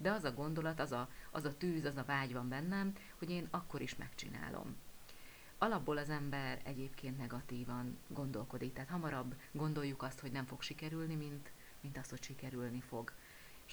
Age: 30-49